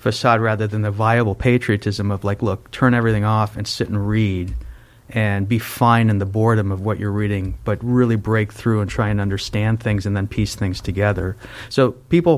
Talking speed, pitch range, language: 205 wpm, 105-120 Hz, English